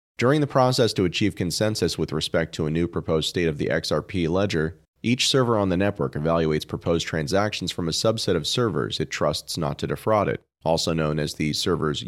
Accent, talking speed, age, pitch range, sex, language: American, 205 wpm, 30-49, 80-100 Hz, male, English